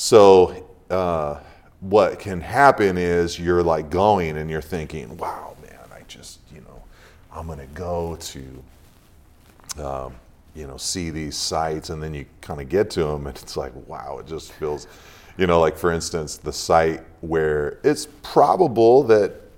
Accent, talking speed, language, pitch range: American, 170 wpm, English, 75-95 Hz